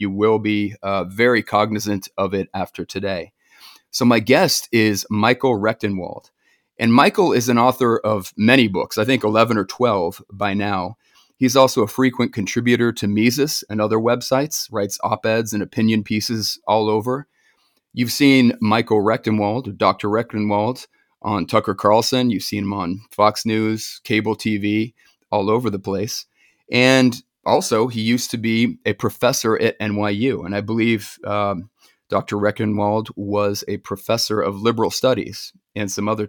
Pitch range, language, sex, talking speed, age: 105-120 Hz, English, male, 155 wpm, 30-49